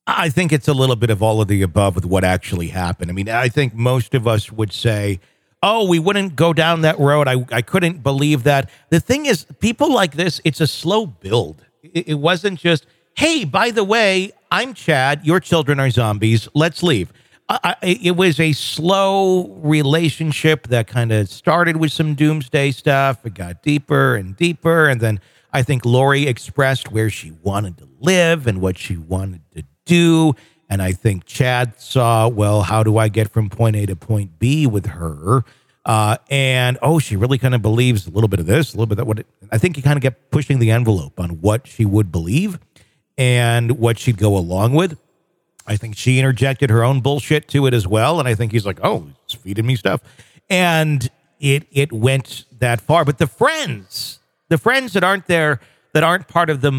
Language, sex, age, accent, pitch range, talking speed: English, male, 50-69, American, 110-160 Hz, 205 wpm